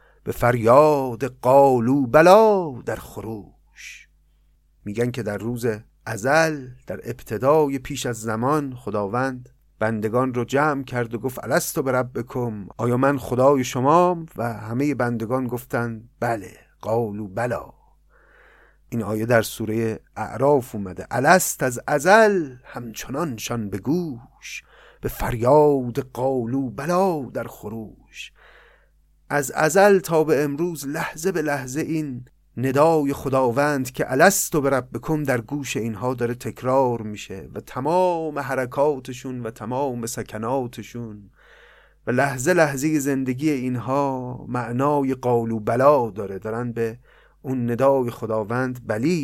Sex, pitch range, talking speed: male, 115-145 Hz, 120 wpm